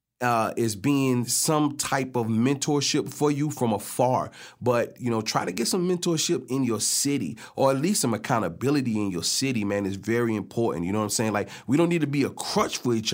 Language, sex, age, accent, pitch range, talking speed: English, male, 30-49, American, 110-140 Hz, 225 wpm